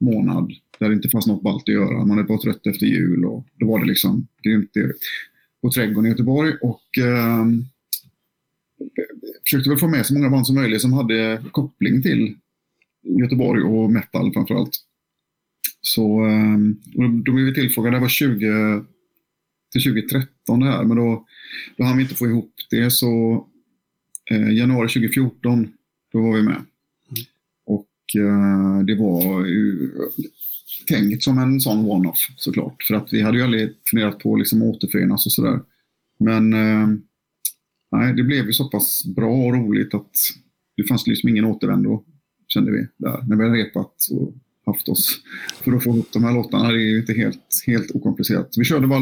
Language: Swedish